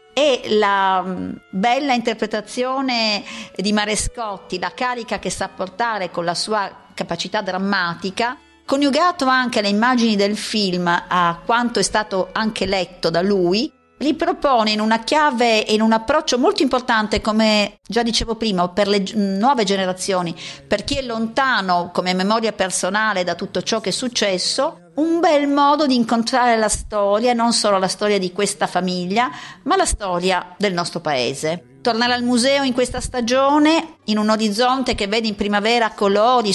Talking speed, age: 155 wpm, 50-69